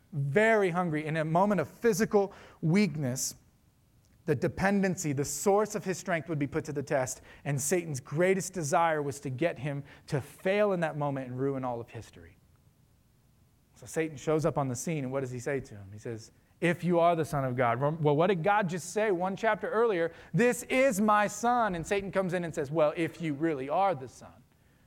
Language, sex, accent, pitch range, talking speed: English, male, American, 120-160 Hz, 210 wpm